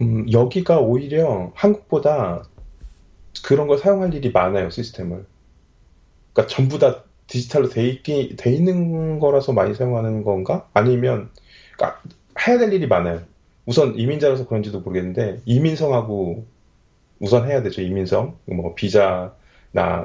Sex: male